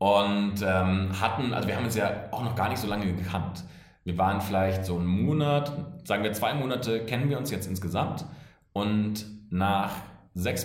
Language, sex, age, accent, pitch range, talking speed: German, male, 30-49, German, 90-120 Hz, 180 wpm